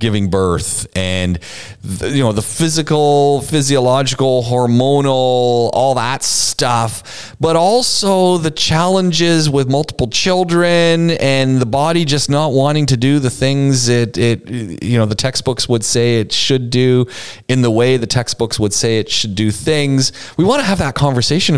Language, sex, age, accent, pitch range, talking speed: English, male, 30-49, American, 105-140 Hz, 160 wpm